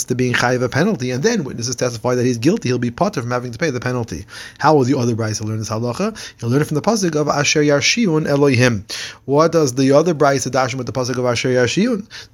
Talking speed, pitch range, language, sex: 255 wpm, 120-150 Hz, English, male